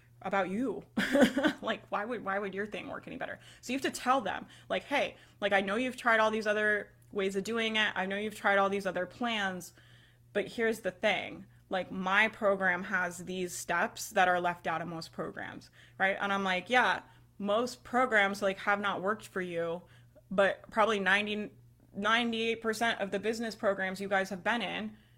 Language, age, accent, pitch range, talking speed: English, 20-39, American, 185-220 Hz, 200 wpm